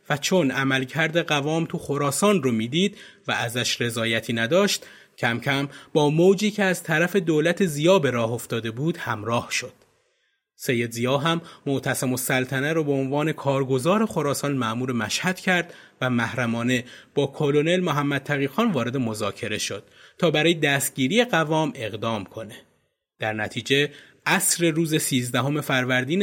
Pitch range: 125-170 Hz